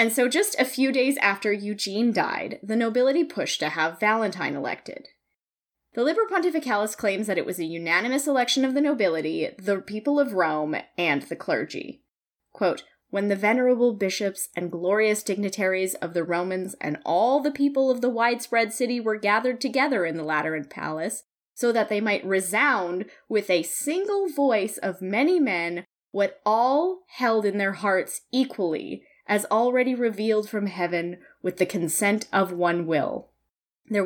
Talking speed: 165 wpm